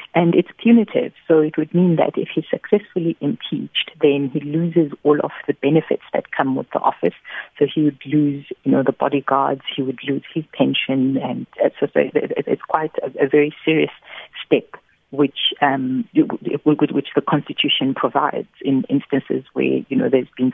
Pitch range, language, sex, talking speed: 140-165 Hz, English, female, 175 wpm